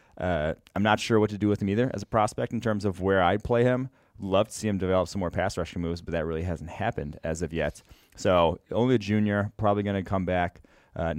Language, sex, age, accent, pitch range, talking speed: English, male, 30-49, American, 90-105 Hz, 255 wpm